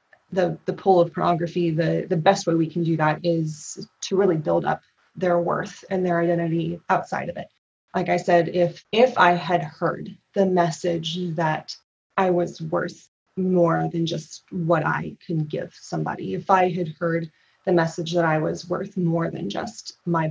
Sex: female